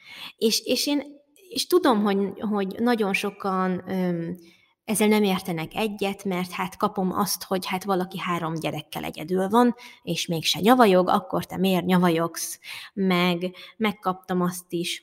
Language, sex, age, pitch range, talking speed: Hungarian, female, 20-39, 175-215 Hz, 150 wpm